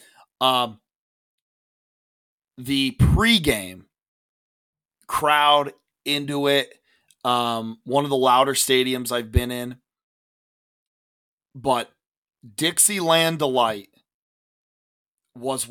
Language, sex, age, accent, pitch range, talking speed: English, male, 30-49, American, 110-140 Hz, 75 wpm